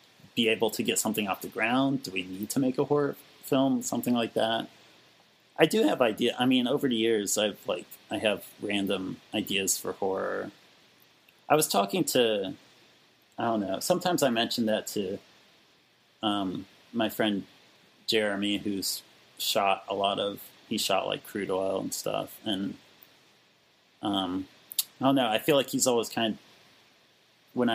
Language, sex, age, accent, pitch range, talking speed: English, male, 30-49, American, 100-130 Hz, 165 wpm